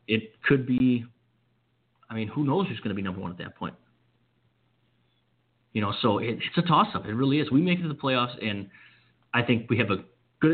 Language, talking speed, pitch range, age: English, 220 wpm, 105-130 Hz, 30-49